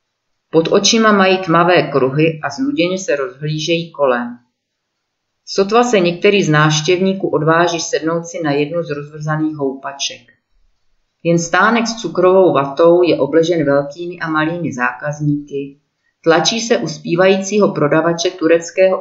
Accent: native